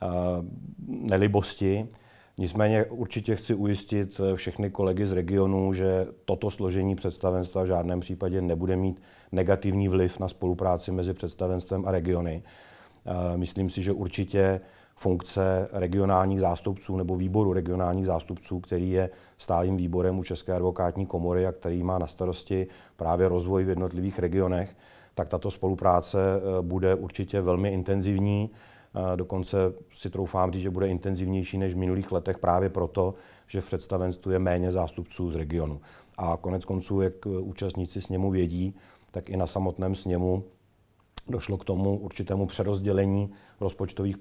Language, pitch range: Czech, 90-95 Hz